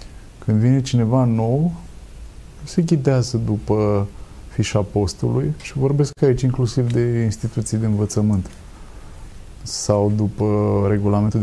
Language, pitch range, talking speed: Romanian, 95-120 Hz, 105 wpm